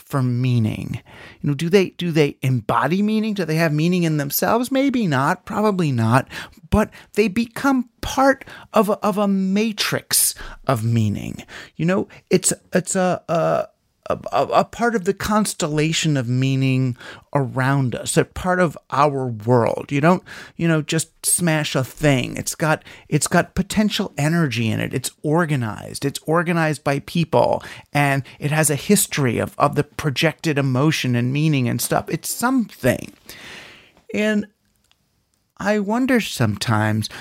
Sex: male